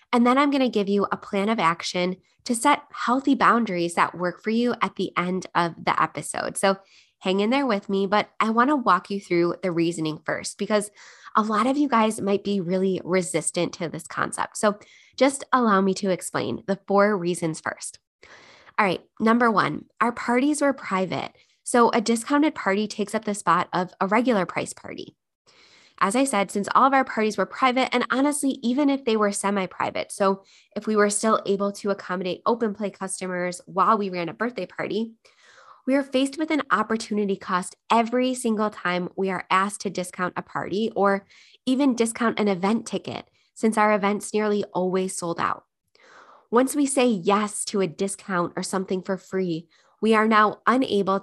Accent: American